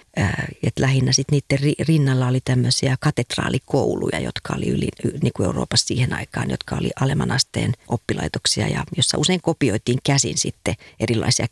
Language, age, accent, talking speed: Finnish, 50-69, native, 140 wpm